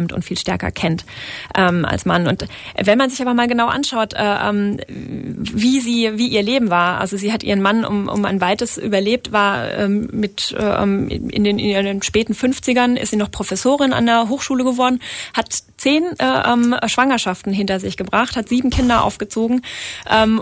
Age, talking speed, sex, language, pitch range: 20-39, 180 wpm, female, German, 195-235 Hz